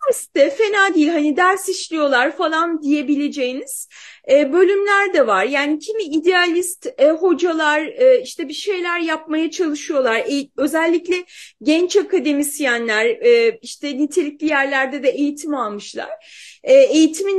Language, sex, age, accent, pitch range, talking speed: Turkish, female, 30-49, native, 295-410 Hz, 120 wpm